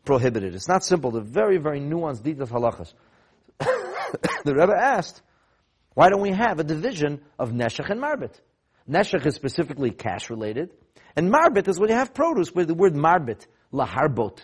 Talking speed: 170 wpm